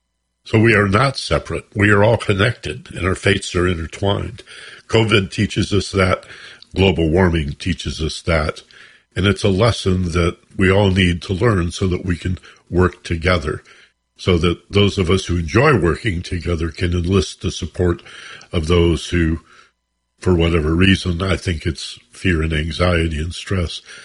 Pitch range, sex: 80-95 Hz, male